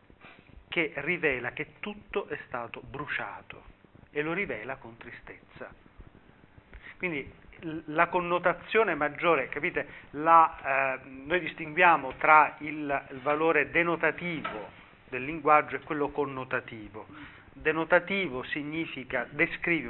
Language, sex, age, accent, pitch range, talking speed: Italian, male, 40-59, native, 130-165 Hz, 105 wpm